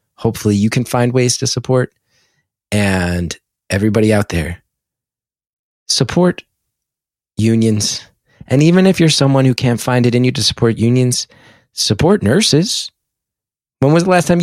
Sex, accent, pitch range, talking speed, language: male, American, 105-130 Hz, 140 wpm, English